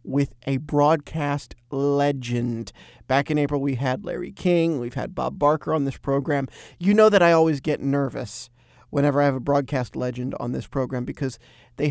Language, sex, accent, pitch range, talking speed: English, male, American, 130-155 Hz, 180 wpm